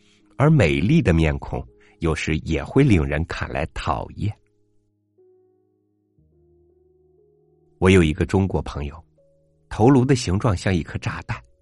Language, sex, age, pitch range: Chinese, male, 50-69, 80-105 Hz